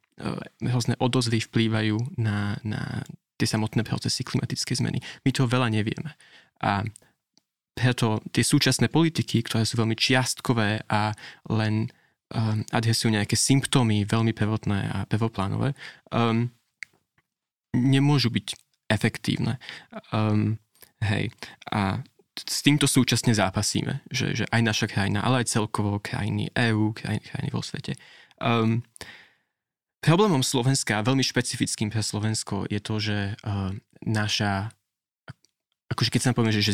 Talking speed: 125 wpm